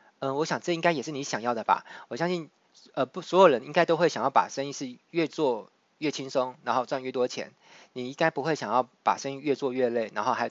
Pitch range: 120-155 Hz